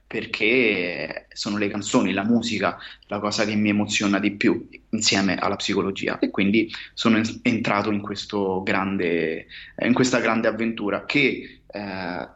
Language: Italian